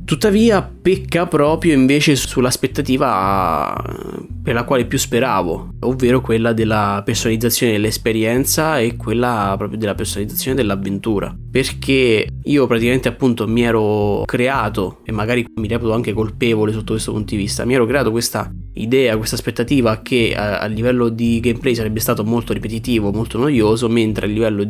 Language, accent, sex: Italian, native, male